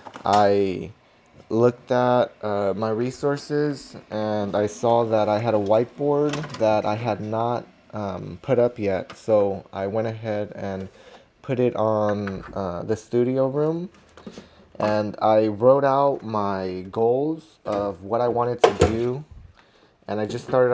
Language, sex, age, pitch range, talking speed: English, male, 20-39, 105-120 Hz, 145 wpm